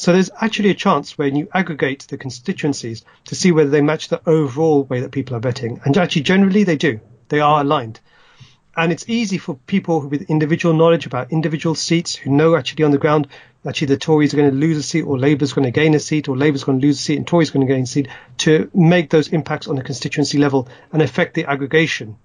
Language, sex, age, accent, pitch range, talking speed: English, male, 40-59, British, 135-160 Hz, 240 wpm